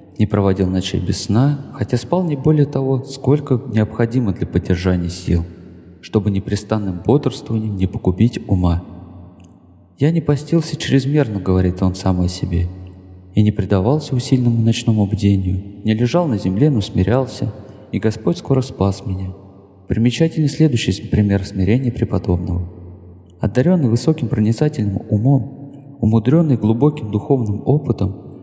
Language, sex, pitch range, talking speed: Russian, male, 95-130 Hz, 125 wpm